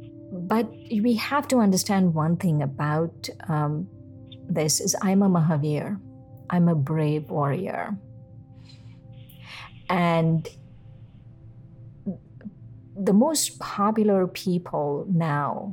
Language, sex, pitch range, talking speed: English, female, 140-190 Hz, 90 wpm